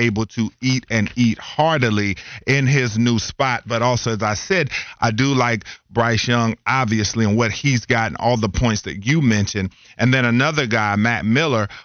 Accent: American